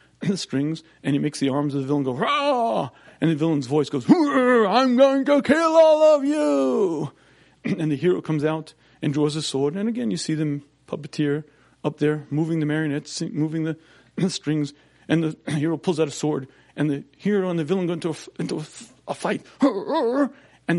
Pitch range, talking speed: 135-195 Hz, 190 wpm